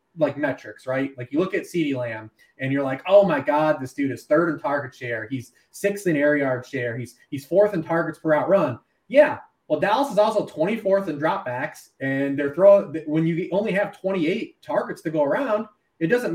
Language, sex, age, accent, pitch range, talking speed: English, male, 20-39, American, 130-195 Hz, 215 wpm